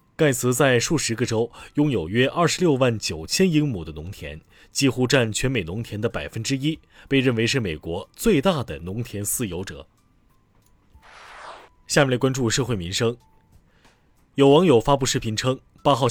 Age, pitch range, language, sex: 20-39, 100-140 Hz, Chinese, male